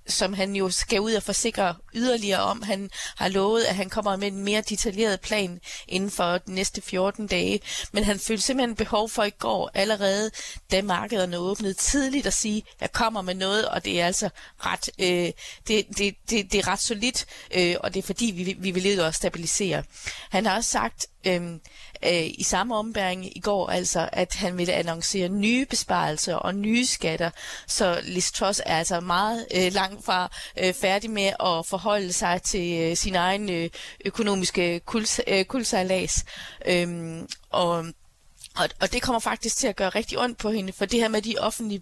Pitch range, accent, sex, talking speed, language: 185-225 Hz, native, female, 190 wpm, Danish